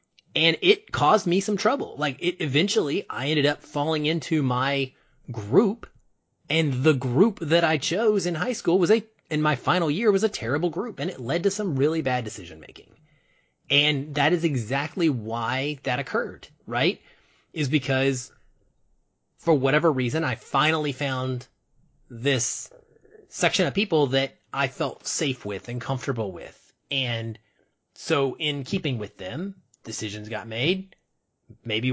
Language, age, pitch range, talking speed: English, 30-49, 125-165 Hz, 155 wpm